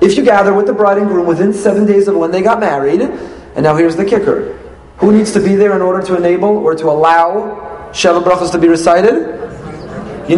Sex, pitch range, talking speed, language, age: male, 165-230 Hz, 225 wpm, English, 30-49